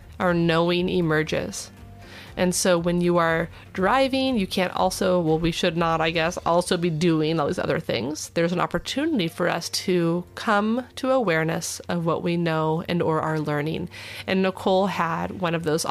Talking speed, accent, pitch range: 180 wpm, American, 155-195 Hz